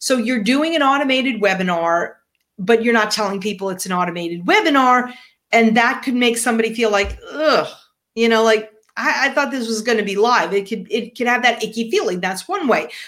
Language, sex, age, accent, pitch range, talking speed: English, female, 40-59, American, 225-325 Hz, 210 wpm